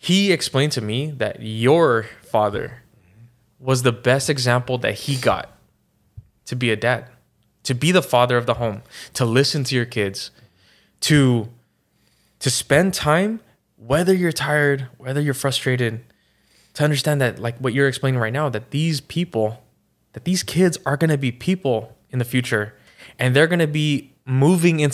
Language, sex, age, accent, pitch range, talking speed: English, male, 20-39, American, 120-150 Hz, 165 wpm